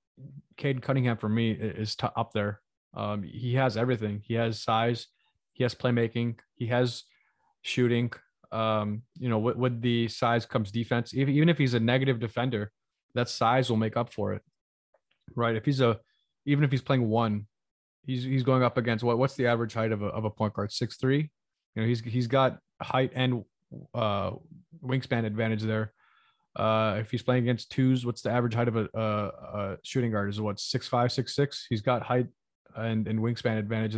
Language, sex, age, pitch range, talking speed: English, male, 20-39, 110-130 Hz, 190 wpm